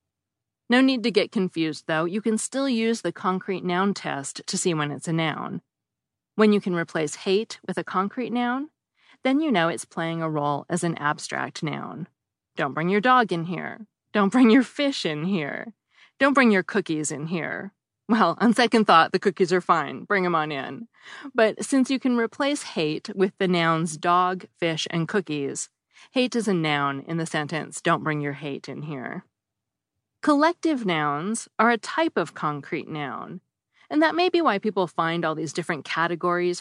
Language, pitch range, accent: English, 160-225 Hz, American